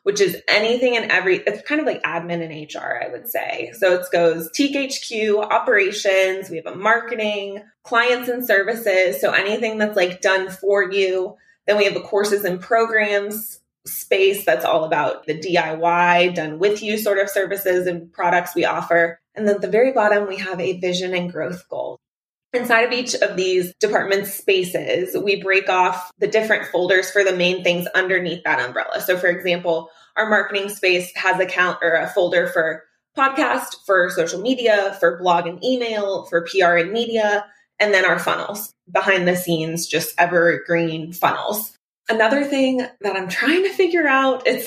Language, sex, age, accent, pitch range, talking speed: English, female, 20-39, American, 180-220 Hz, 180 wpm